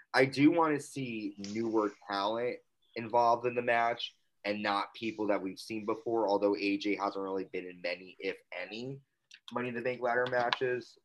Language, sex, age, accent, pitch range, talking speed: English, male, 20-39, American, 100-125 Hz, 180 wpm